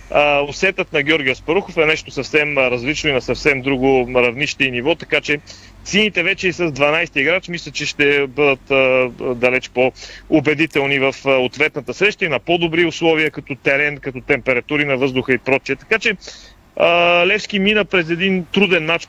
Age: 40-59